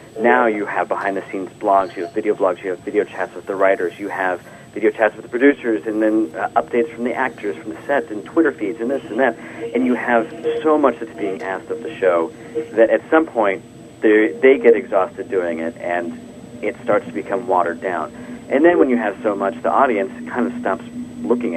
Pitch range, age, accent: 95-155 Hz, 40-59, American